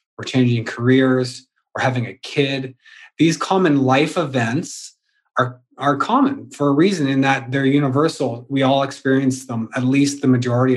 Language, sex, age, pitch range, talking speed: English, male, 30-49, 125-150 Hz, 160 wpm